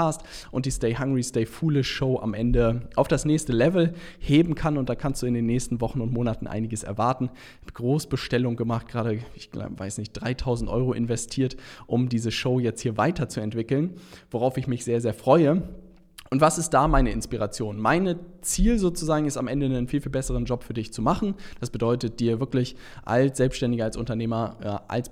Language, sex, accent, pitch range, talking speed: German, male, German, 115-145 Hz, 190 wpm